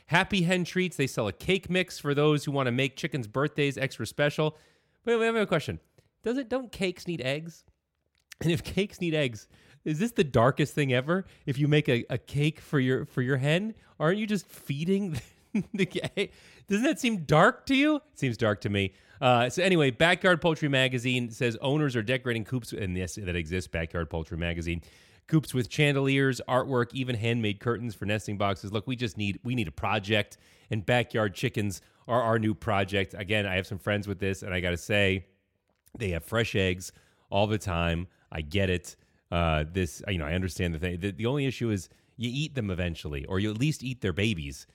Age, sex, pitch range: 30-49, male, 95-145 Hz